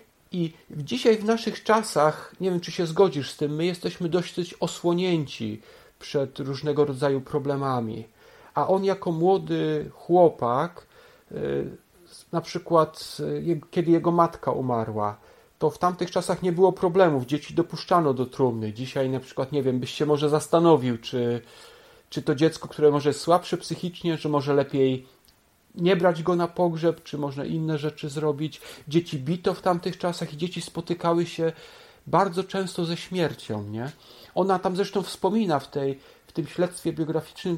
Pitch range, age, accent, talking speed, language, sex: 145-185 Hz, 40-59, native, 155 wpm, Polish, male